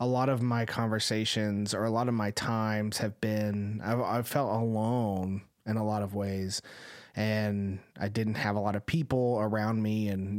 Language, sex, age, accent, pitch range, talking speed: English, male, 30-49, American, 105-125 Hz, 190 wpm